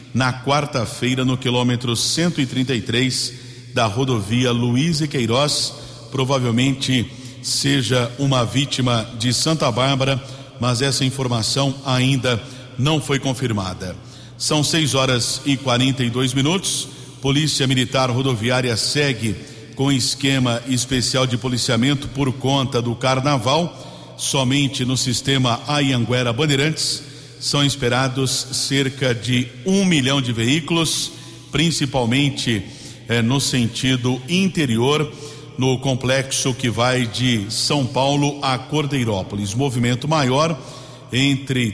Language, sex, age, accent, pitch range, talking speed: Portuguese, male, 50-69, Brazilian, 125-140 Hz, 105 wpm